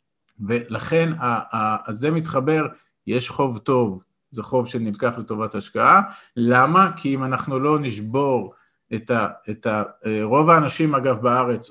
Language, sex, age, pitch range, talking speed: Hebrew, male, 50-69, 120-155 Hz, 115 wpm